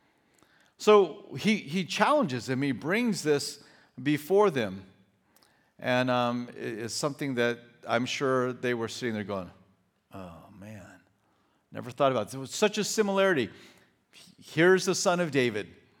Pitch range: 120-185 Hz